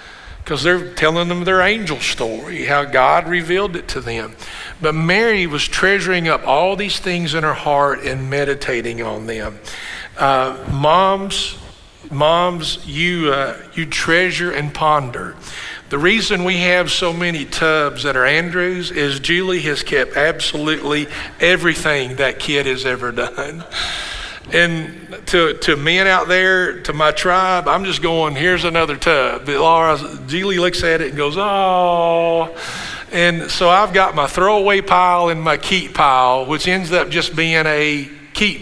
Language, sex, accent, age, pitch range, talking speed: English, male, American, 50-69, 145-180 Hz, 155 wpm